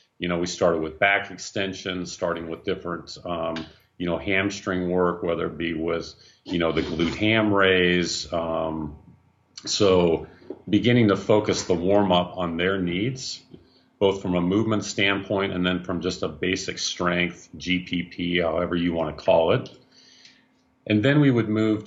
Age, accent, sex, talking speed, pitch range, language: 40-59, American, male, 165 wpm, 85-100 Hz, English